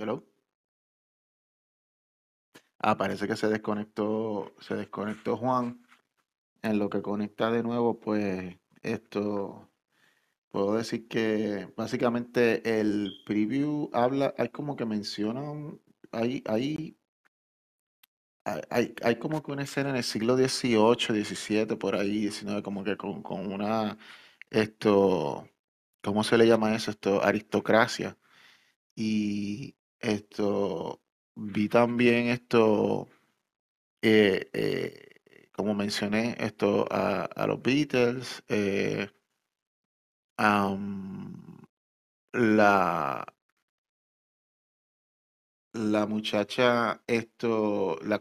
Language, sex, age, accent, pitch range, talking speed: Spanish, male, 30-49, Venezuelan, 105-120 Hz, 95 wpm